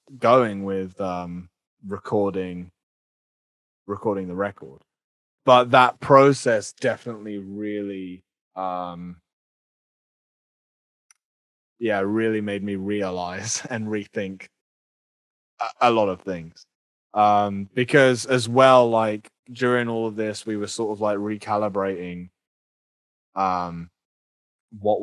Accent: British